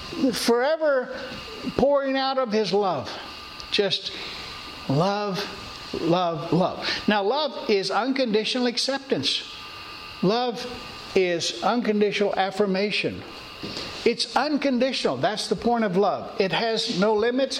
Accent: American